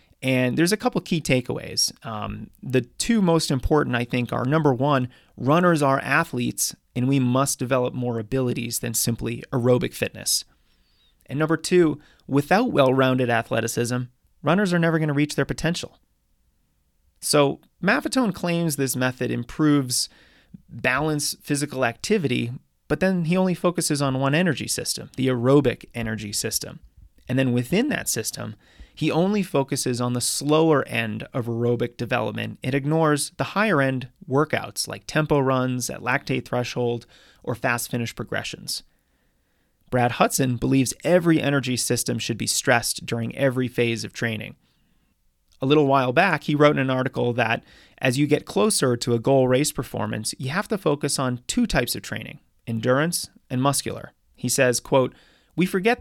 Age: 30-49